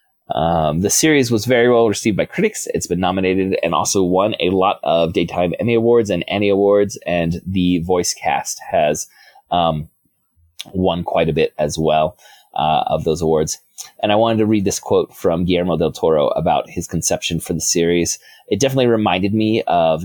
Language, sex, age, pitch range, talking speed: English, male, 30-49, 90-115 Hz, 185 wpm